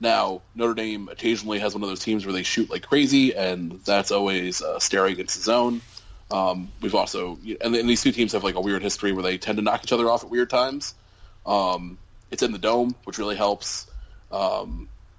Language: English